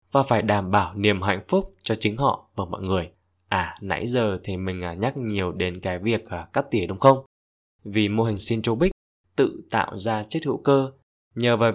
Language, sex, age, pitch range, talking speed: Vietnamese, male, 20-39, 100-130 Hz, 200 wpm